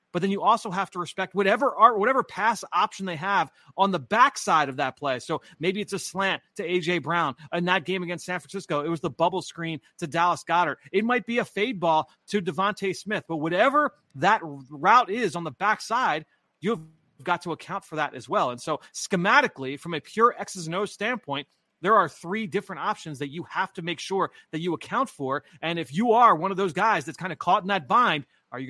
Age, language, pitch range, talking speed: 30-49, English, 160-205 Hz, 230 wpm